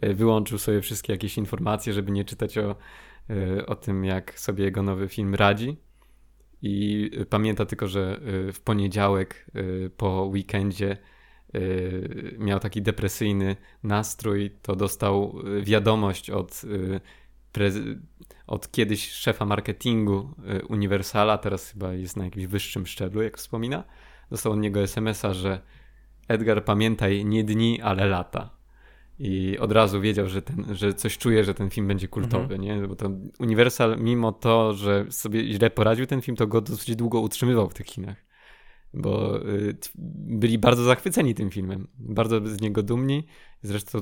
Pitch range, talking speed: 100-110 Hz, 140 wpm